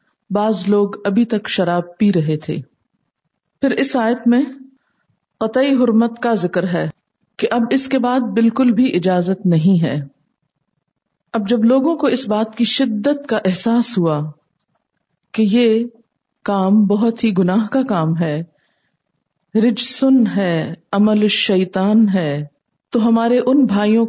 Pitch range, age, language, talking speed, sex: 190-245 Hz, 50-69, Urdu, 140 wpm, female